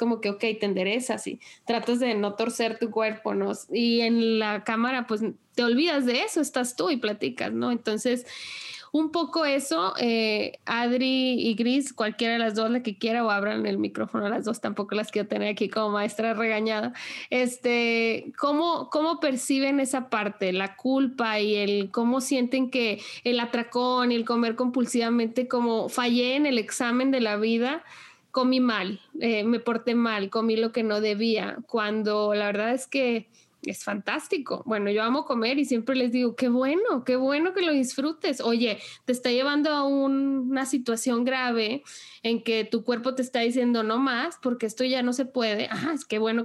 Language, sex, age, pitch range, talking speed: Spanish, female, 20-39, 220-260 Hz, 185 wpm